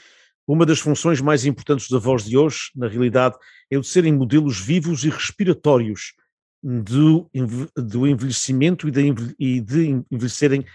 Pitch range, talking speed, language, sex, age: 120-150 Hz, 140 wpm, English, male, 50-69